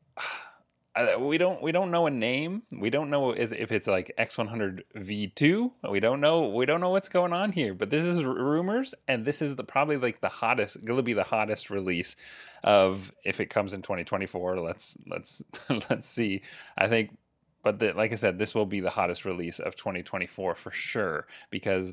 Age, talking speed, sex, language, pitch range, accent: 30-49, 190 wpm, male, English, 100-145 Hz, American